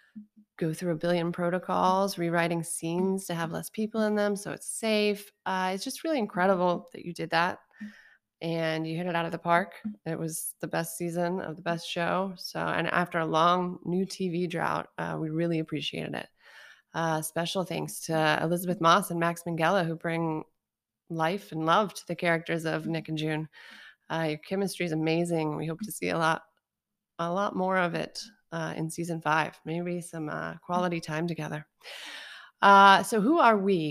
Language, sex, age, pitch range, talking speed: English, female, 20-39, 160-190 Hz, 190 wpm